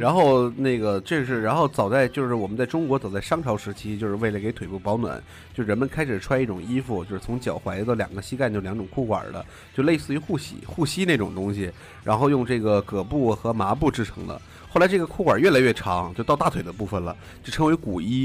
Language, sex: Chinese, male